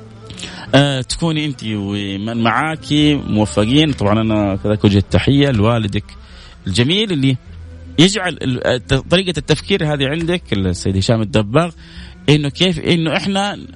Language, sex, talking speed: Arabic, male, 115 wpm